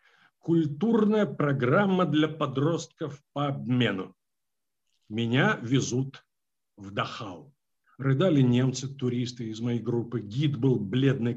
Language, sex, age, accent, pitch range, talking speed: Russian, male, 50-69, native, 120-165 Hz, 100 wpm